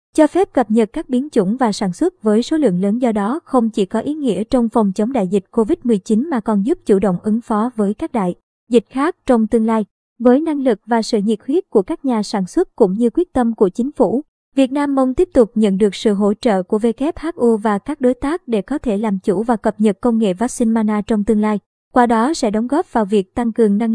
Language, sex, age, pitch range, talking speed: Vietnamese, male, 20-39, 215-260 Hz, 255 wpm